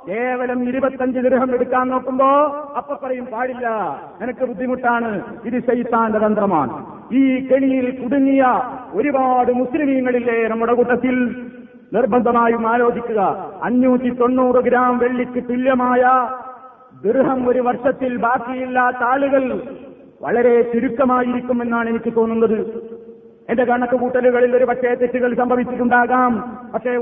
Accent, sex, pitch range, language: native, male, 240-265 Hz, Malayalam